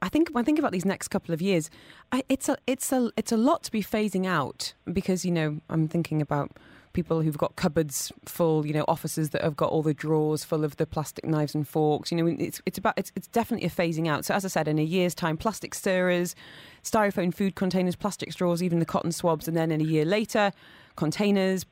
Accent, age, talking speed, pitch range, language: British, 20-39, 240 wpm, 150-185 Hz, English